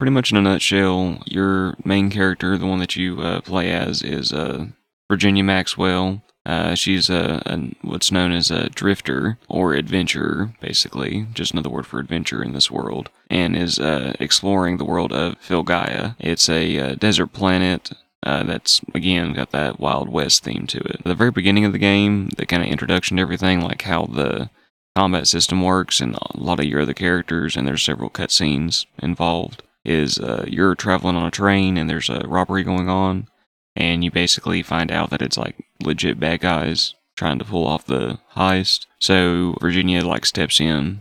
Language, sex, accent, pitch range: English, male, American, 80-95 Hz